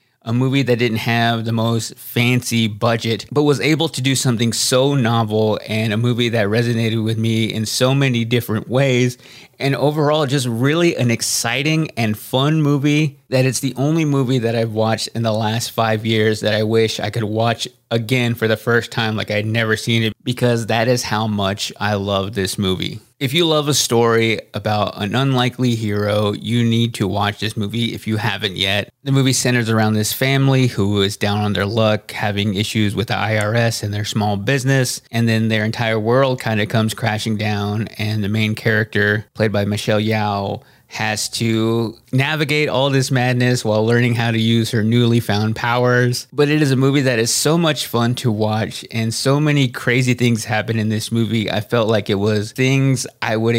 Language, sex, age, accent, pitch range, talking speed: English, male, 30-49, American, 110-125 Hz, 200 wpm